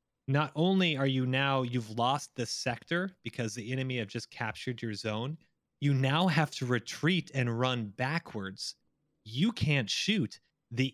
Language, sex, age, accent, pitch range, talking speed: English, male, 30-49, American, 120-155 Hz, 160 wpm